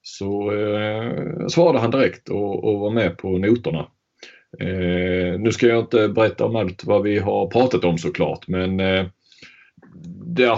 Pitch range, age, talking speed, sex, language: 90-110 Hz, 30-49, 140 wpm, male, Swedish